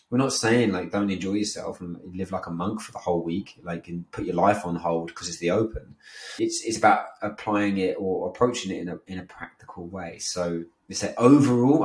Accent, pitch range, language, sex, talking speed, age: British, 85-110 Hz, English, male, 230 wpm, 20-39